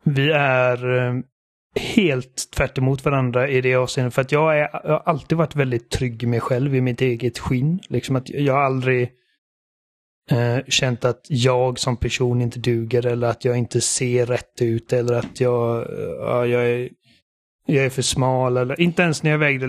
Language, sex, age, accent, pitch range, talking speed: Swedish, male, 30-49, native, 120-135 Hz, 185 wpm